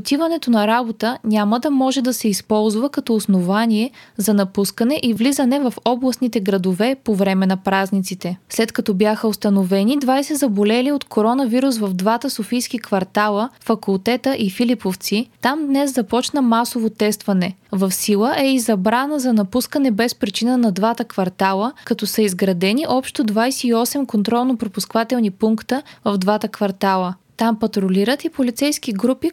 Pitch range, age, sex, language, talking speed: 205-250 Hz, 20-39, female, Bulgarian, 140 wpm